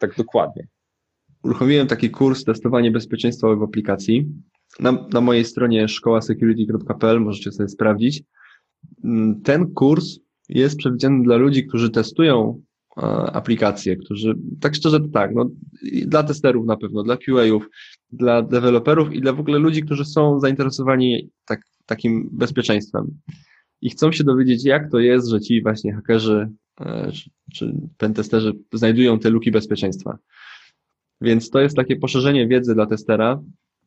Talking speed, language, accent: 135 wpm, Polish, native